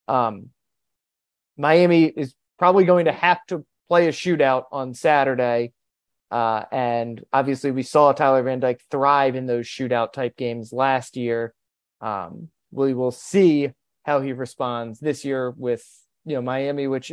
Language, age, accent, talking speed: English, 30-49, American, 150 wpm